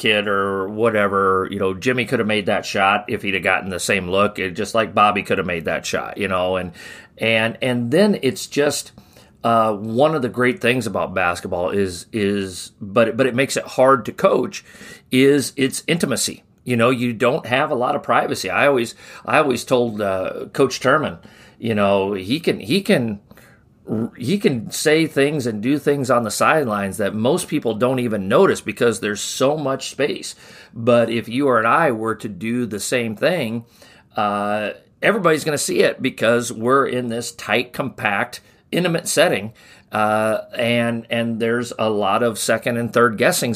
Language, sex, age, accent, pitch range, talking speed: English, male, 40-59, American, 105-130 Hz, 185 wpm